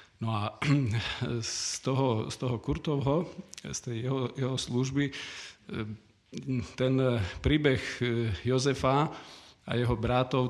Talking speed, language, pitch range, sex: 105 wpm, Slovak, 110-135 Hz, male